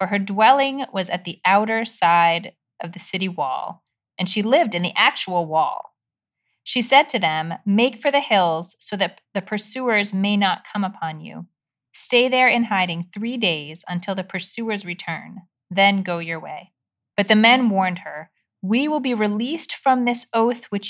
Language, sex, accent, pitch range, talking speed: English, female, American, 180-225 Hz, 180 wpm